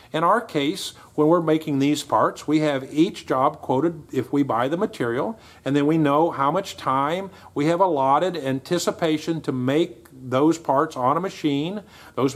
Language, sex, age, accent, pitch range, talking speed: English, male, 50-69, American, 135-165 Hz, 180 wpm